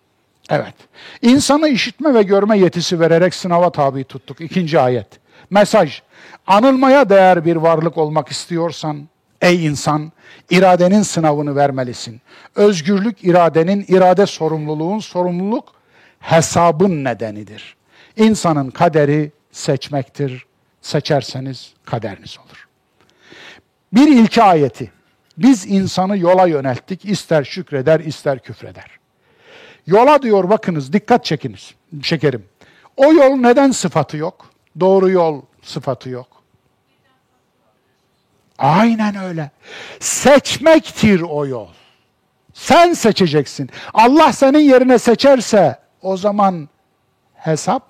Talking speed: 95 wpm